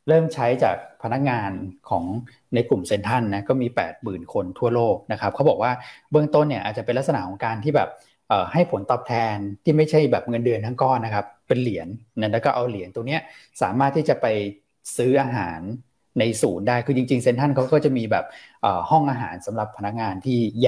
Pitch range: 110-135 Hz